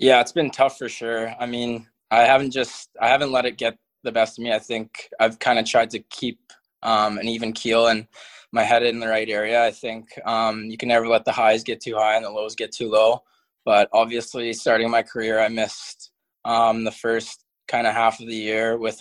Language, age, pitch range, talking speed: English, 20-39, 110-115 Hz, 235 wpm